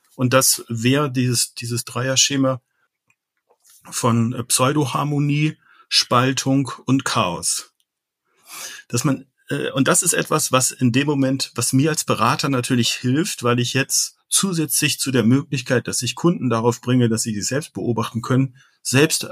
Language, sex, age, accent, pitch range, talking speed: German, male, 50-69, German, 120-140 Hz, 140 wpm